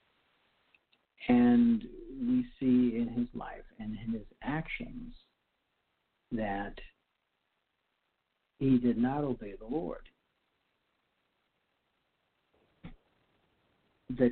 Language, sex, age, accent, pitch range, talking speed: English, male, 60-79, American, 115-150 Hz, 75 wpm